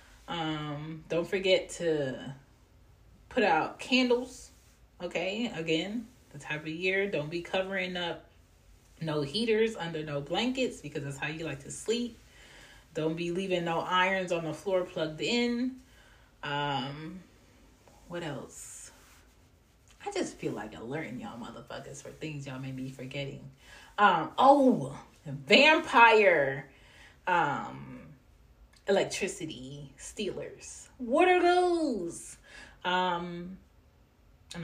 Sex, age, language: female, 30-49, English